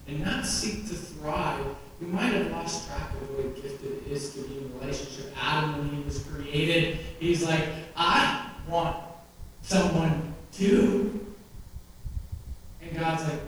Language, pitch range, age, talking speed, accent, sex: English, 145-190 Hz, 40-59, 145 wpm, American, male